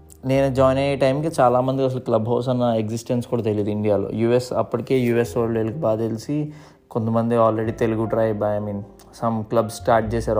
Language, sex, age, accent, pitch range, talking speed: Telugu, male, 20-39, native, 105-125 Hz, 180 wpm